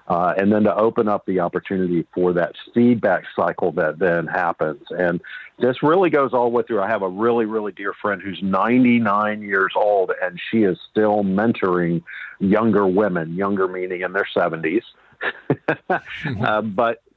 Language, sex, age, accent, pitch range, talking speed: English, male, 50-69, American, 95-115 Hz, 170 wpm